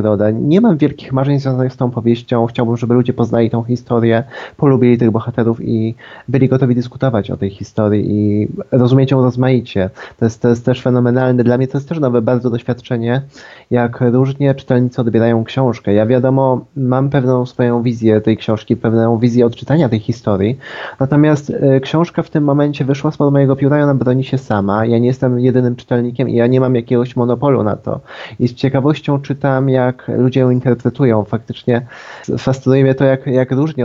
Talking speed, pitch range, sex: 185 wpm, 115-130 Hz, male